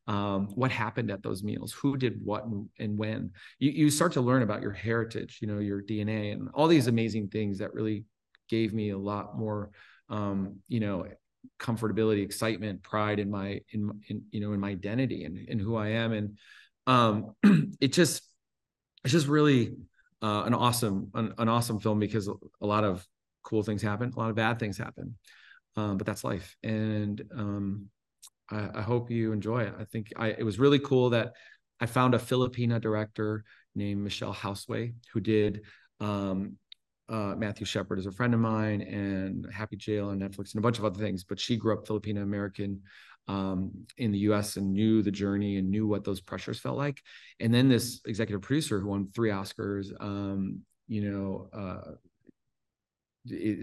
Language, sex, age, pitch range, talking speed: English, male, 30-49, 100-115 Hz, 185 wpm